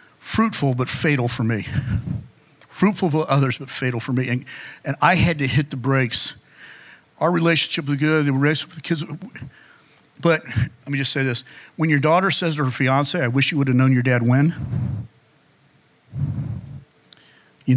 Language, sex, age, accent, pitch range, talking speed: English, male, 50-69, American, 125-170 Hz, 175 wpm